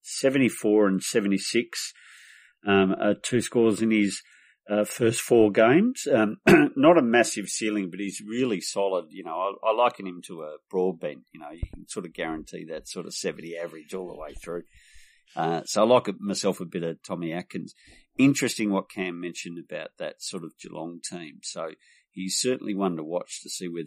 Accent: Australian